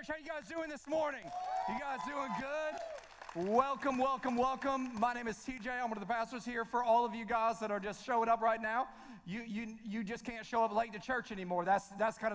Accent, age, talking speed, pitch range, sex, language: American, 40-59, 240 wpm, 215-255 Hz, male, English